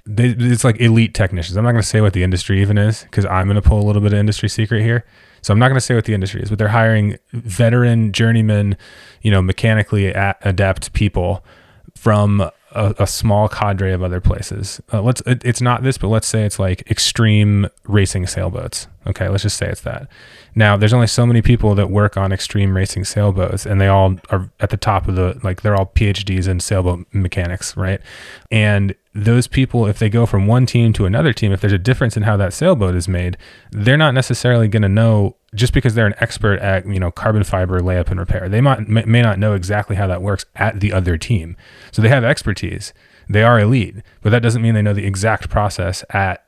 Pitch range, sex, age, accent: 95-115 Hz, male, 20-39, American